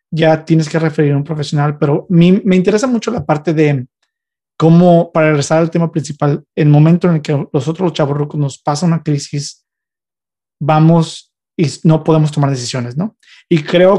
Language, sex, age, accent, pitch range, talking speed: Spanish, male, 30-49, Mexican, 150-175 Hz, 190 wpm